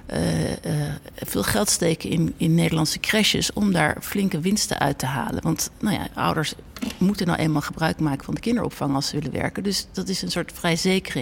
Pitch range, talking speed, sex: 150-210 Hz, 200 wpm, female